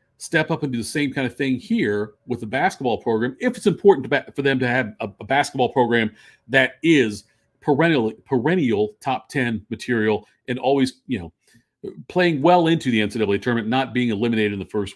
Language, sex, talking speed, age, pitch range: English, male, 200 wpm, 40-59, 115-145 Hz